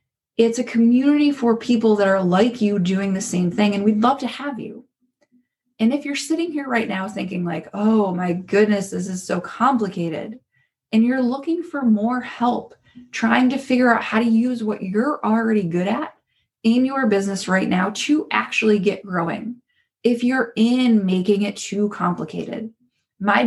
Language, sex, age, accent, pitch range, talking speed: English, female, 20-39, American, 200-250 Hz, 180 wpm